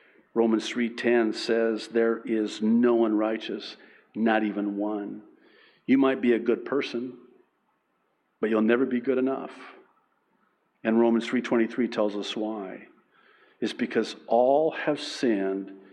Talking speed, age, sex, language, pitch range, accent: 125 wpm, 50-69, male, English, 110-130 Hz, American